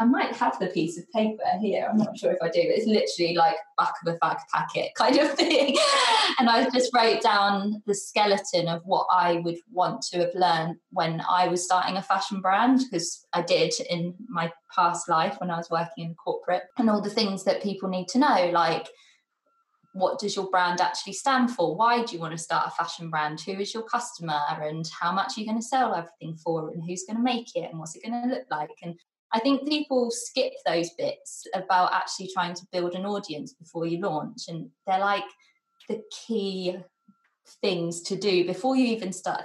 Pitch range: 170-230 Hz